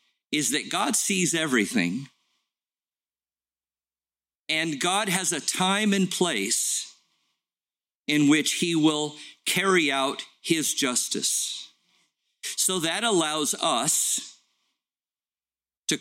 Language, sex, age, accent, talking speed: English, male, 50-69, American, 95 wpm